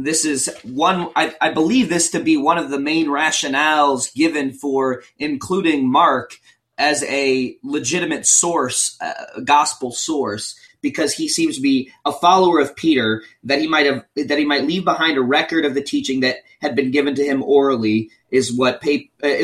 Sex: male